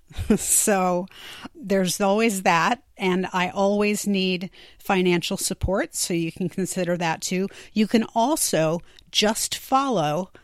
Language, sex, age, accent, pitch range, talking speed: English, female, 40-59, American, 175-210 Hz, 120 wpm